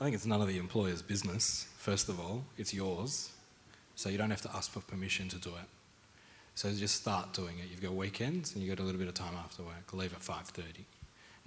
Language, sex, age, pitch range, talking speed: English, male, 30-49, 90-110 Hz, 235 wpm